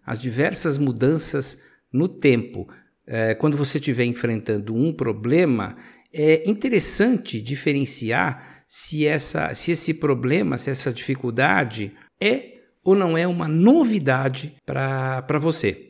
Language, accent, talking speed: Portuguese, Brazilian, 110 wpm